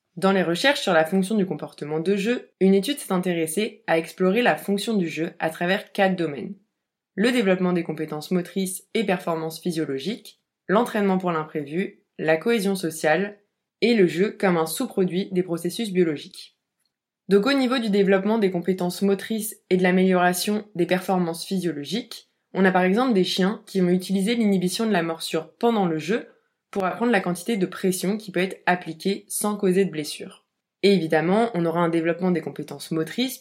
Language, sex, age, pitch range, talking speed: French, female, 20-39, 170-210 Hz, 180 wpm